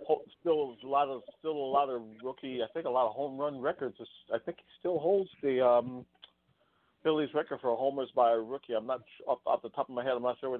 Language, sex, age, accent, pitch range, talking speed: English, male, 50-69, American, 125-160 Hz, 265 wpm